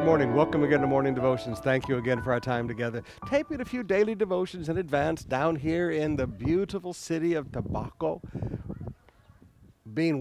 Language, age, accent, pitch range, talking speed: English, 60-79, American, 120-160 Hz, 175 wpm